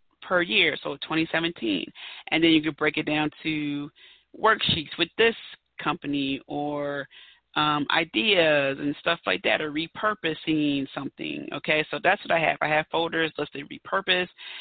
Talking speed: 150 wpm